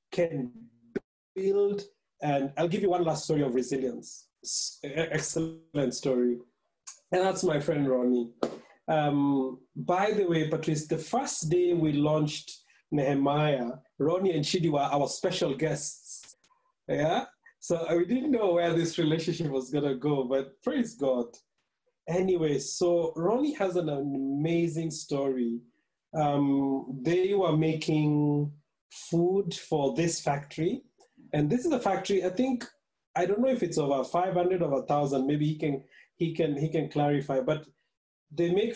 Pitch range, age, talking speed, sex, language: 145-180 Hz, 30-49, 140 wpm, male, English